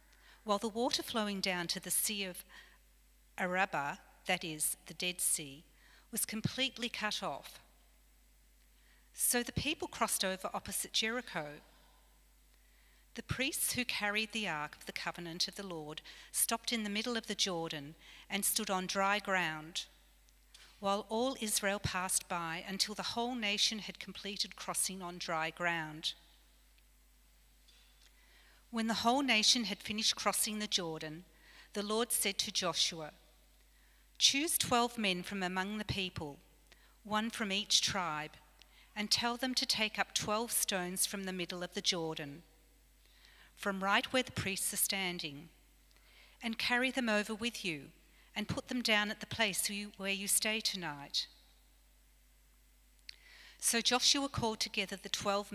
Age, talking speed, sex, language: 40-59, 145 wpm, female, English